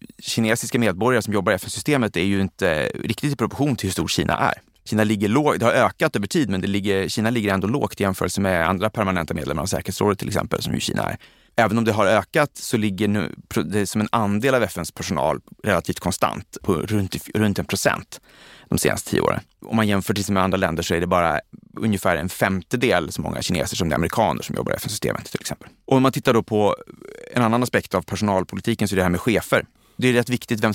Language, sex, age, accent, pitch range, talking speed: Swedish, male, 30-49, native, 95-115 Hz, 235 wpm